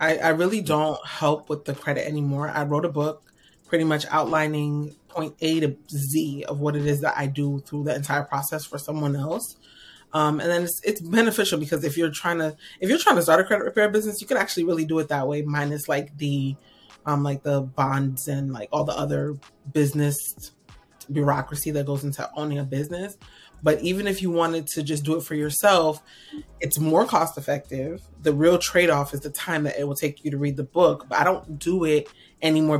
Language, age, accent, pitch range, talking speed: English, 30-49, American, 145-165 Hz, 215 wpm